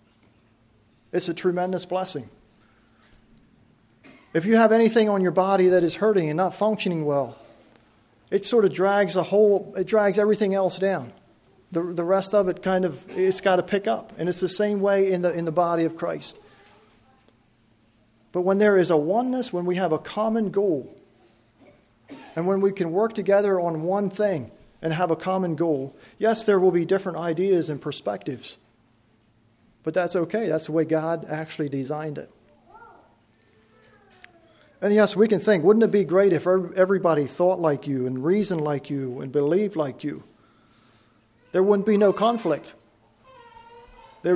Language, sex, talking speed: English, male, 170 wpm